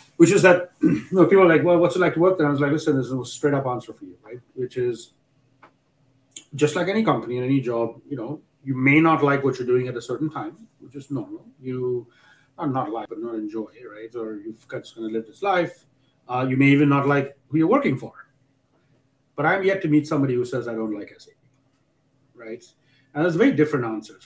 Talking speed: 235 wpm